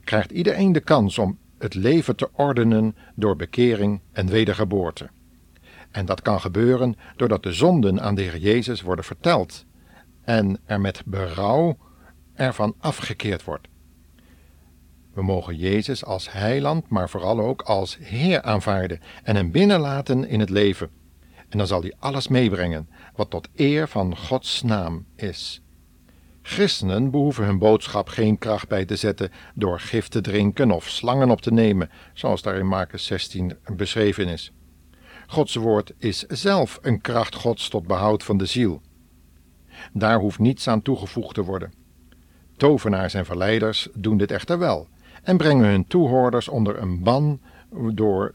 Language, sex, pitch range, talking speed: Dutch, male, 90-115 Hz, 150 wpm